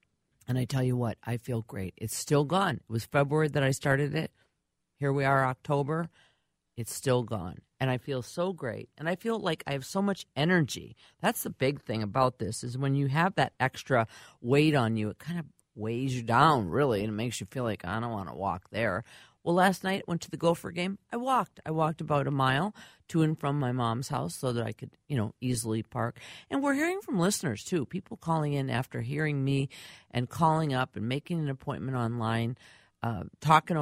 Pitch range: 120-165 Hz